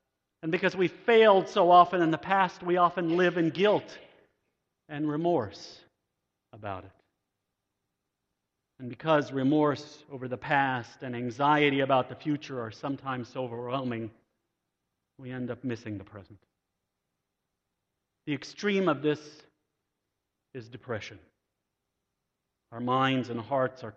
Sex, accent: male, American